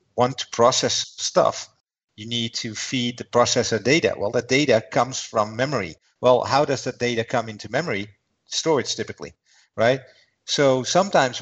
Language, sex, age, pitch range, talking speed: English, male, 50-69, 115-135 Hz, 160 wpm